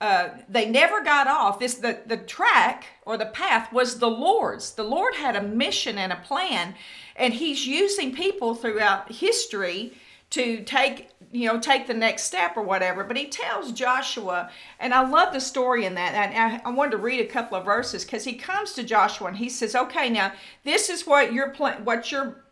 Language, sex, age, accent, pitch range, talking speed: English, female, 50-69, American, 225-280 Hz, 205 wpm